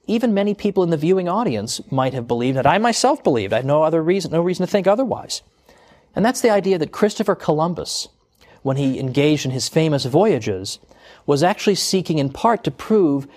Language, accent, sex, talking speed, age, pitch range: English, American, male, 200 wpm, 40-59, 140-200 Hz